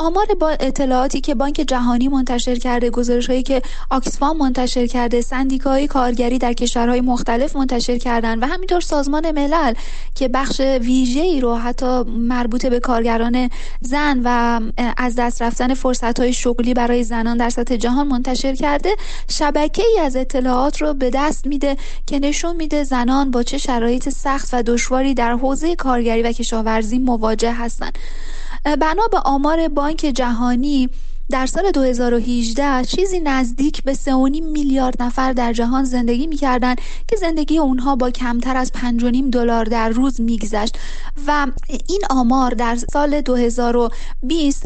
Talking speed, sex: 145 wpm, female